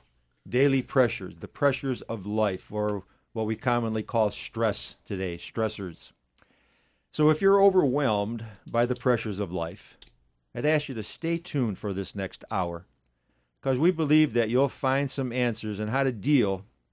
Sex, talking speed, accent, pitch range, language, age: male, 160 wpm, American, 95-135 Hz, English, 50-69